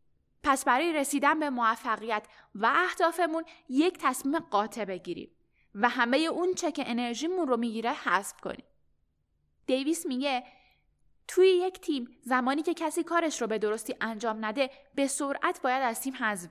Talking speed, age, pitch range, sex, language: 150 wpm, 10-29, 220-310 Hz, female, Persian